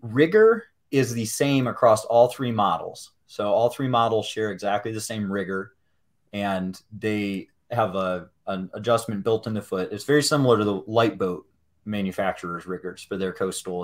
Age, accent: 30-49, American